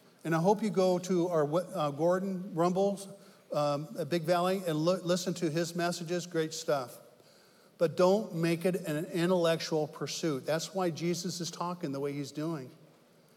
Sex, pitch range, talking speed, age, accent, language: male, 150-180 Hz, 170 wpm, 50-69, American, English